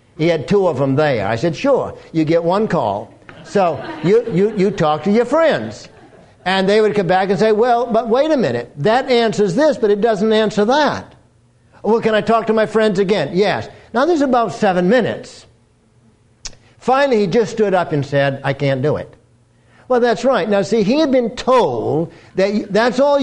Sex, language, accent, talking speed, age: male, English, American, 200 wpm, 60-79